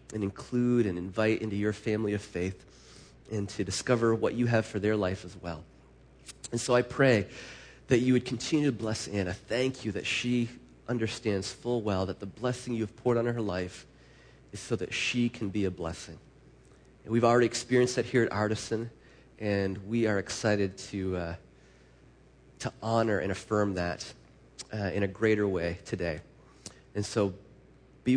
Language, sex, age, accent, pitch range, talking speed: English, male, 30-49, American, 100-125 Hz, 175 wpm